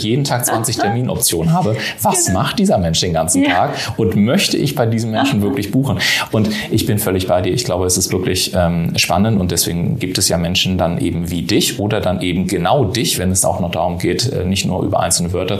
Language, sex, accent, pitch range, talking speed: German, male, German, 90-115 Hz, 225 wpm